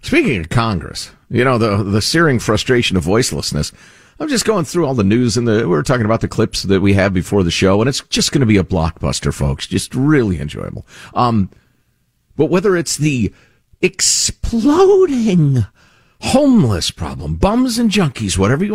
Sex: male